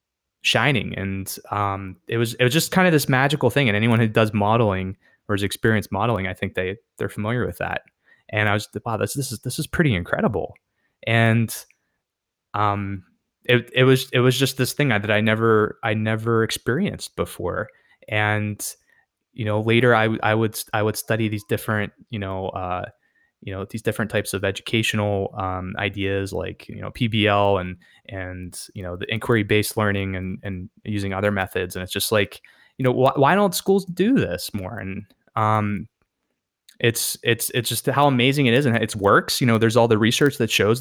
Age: 20-39